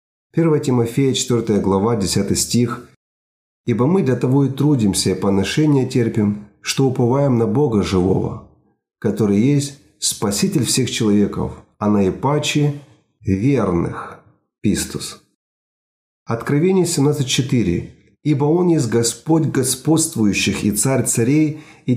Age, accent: 40-59, native